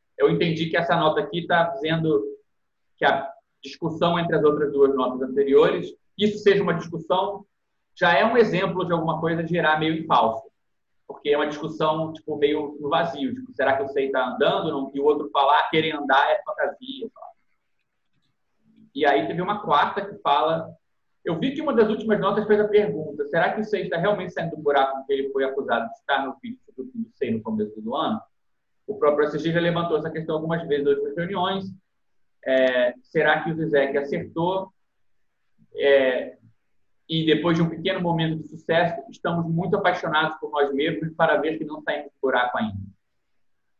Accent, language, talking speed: Brazilian, Portuguese, 190 wpm